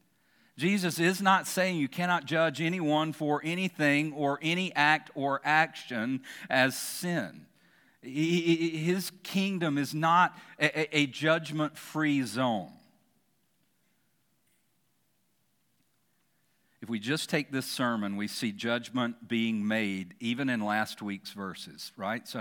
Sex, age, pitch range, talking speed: male, 50-69, 120-155 Hz, 110 wpm